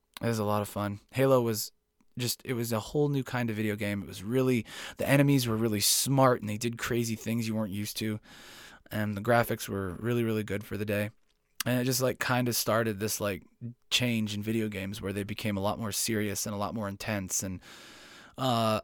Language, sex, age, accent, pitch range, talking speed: English, male, 20-39, American, 105-130 Hz, 230 wpm